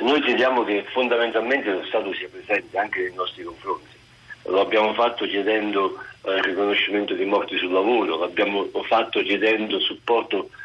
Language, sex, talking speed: Italian, male, 150 wpm